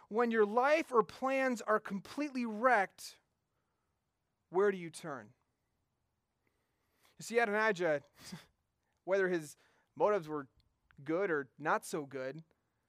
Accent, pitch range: American, 175-240 Hz